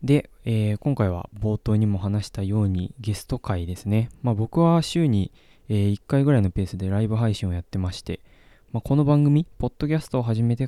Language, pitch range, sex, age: Japanese, 95-125 Hz, male, 20-39